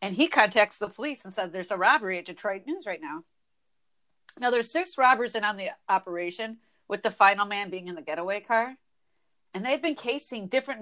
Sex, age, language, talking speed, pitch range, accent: female, 40-59, English, 205 wpm, 190-260 Hz, American